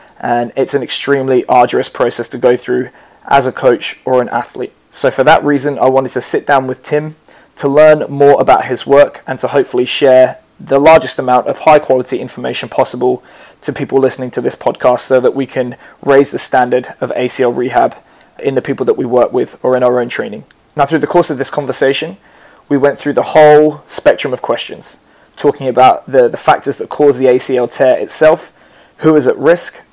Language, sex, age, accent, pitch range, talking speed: English, male, 20-39, British, 125-150 Hz, 205 wpm